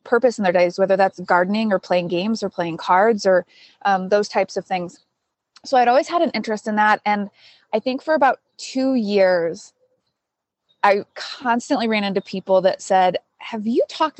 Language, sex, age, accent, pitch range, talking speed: English, female, 20-39, American, 190-240 Hz, 185 wpm